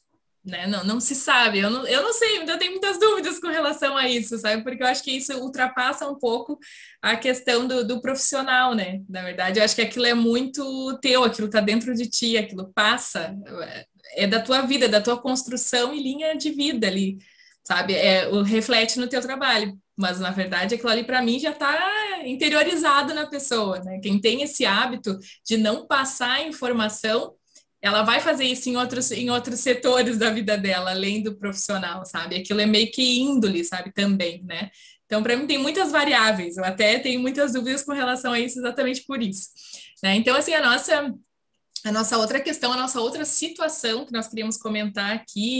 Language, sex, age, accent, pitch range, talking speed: Portuguese, female, 20-39, Brazilian, 215-275 Hz, 195 wpm